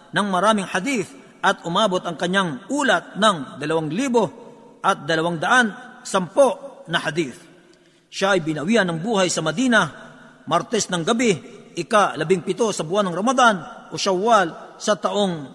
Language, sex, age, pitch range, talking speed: Filipino, male, 50-69, 170-225 Hz, 145 wpm